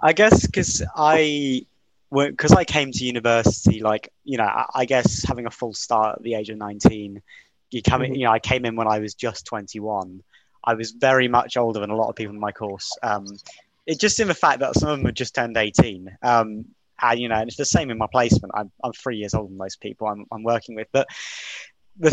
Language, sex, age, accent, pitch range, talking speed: English, male, 20-39, British, 110-130 Hz, 240 wpm